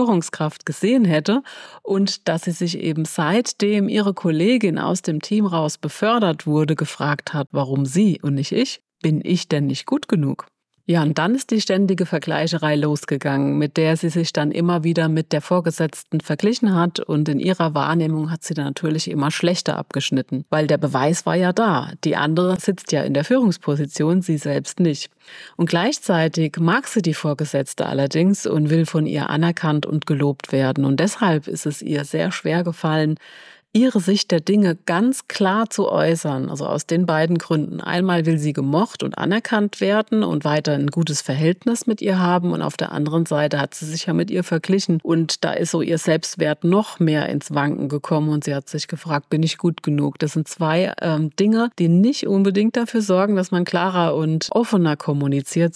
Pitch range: 150-185 Hz